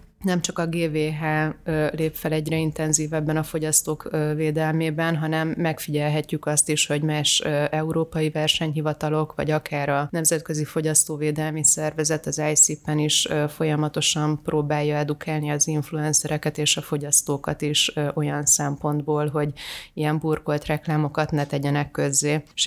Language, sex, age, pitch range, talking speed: Hungarian, female, 30-49, 150-155 Hz, 120 wpm